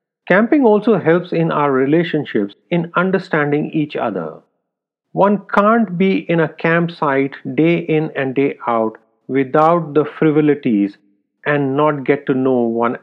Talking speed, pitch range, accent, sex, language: 140 wpm, 130-175 Hz, Indian, male, English